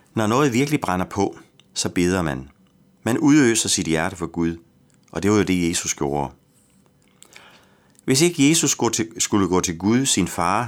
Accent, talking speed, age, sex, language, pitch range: native, 175 wpm, 30-49, male, Danish, 80-120 Hz